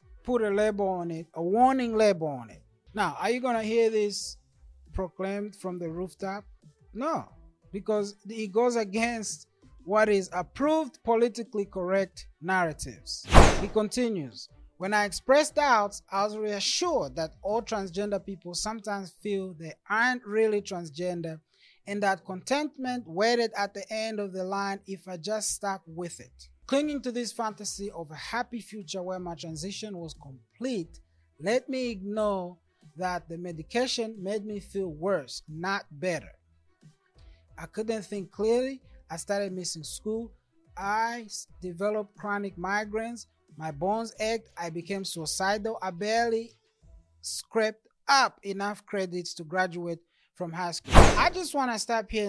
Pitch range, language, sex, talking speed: 175-220 Hz, English, male, 145 wpm